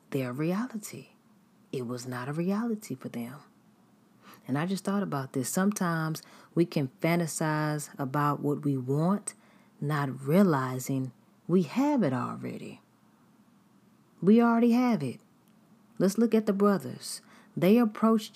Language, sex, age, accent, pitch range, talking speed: English, female, 40-59, American, 155-210 Hz, 130 wpm